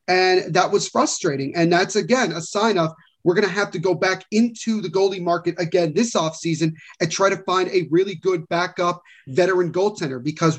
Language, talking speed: English, 200 wpm